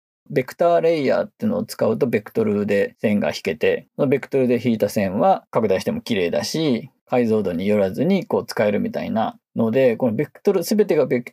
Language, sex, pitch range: Japanese, male, 125-185 Hz